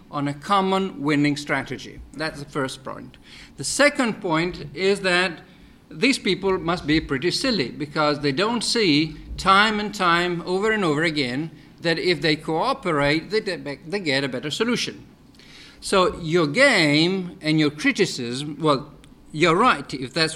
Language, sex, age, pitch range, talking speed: Italian, male, 50-69, 145-195 Hz, 150 wpm